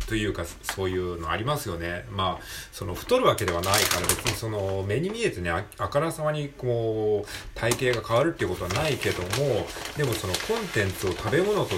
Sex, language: male, Japanese